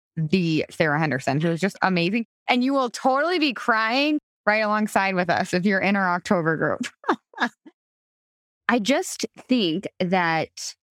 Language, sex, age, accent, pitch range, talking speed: English, female, 20-39, American, 170-225 Hz, 150 wpm